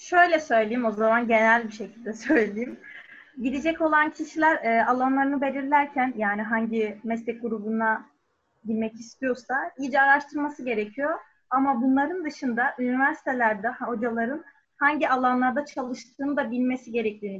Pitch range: 225-285 Hz